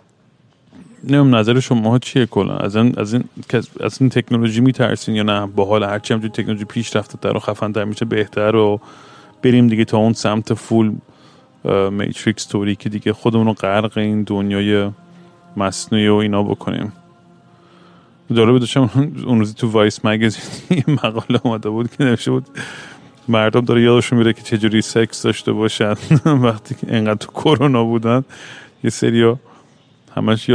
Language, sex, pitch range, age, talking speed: Persian, male, 110-125 Hz, 30-49, 165 wpm